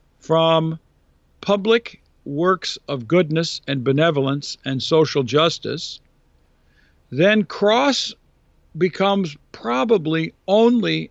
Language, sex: English, male